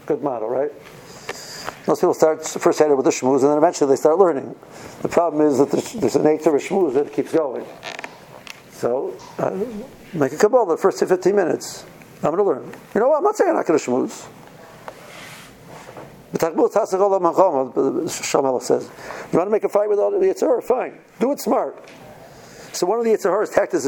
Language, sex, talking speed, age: English, male, 185 wpm, 60-79